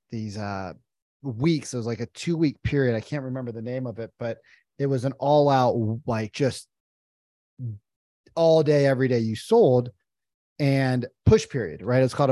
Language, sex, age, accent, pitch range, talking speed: English, male, 30-49, American, 120-155 Hz, 180 wpm